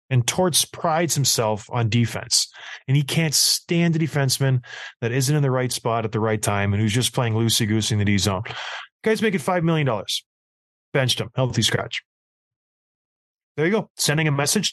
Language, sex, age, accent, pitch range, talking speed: English, male, 20-39, American, 120-160 Hz, 190 wpm